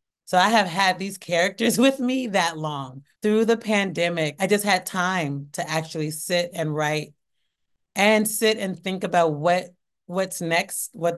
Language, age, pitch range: English, 30-49, 155-190 Hz